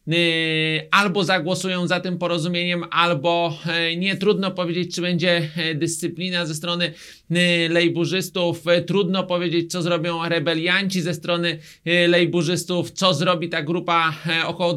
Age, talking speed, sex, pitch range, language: 30-49, 115 wpm, male, 160-180 Hz, Polish